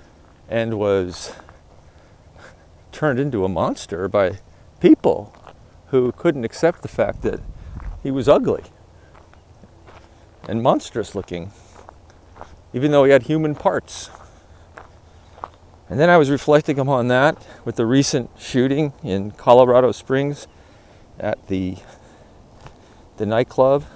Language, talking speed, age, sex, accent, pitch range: English, 110 wpm, 40-59, male, American, 90-130 Hz